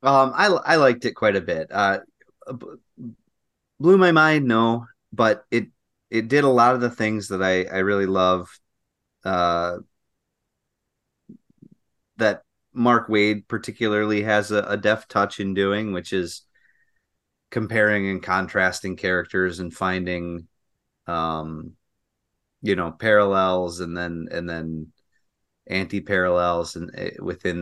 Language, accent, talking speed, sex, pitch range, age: English, American, 125 wpm, male, 90-120 Hz, 30-49